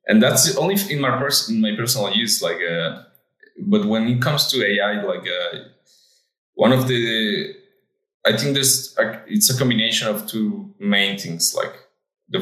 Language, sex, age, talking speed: English, male, 20-39, 160 wpm